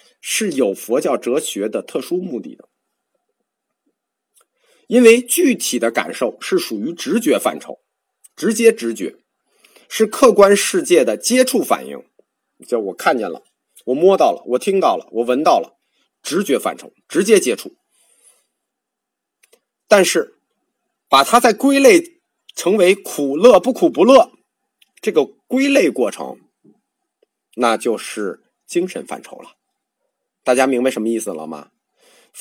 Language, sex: Chinese, male